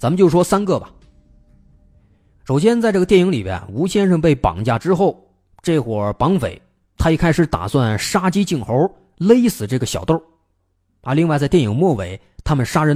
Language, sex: Chinese, male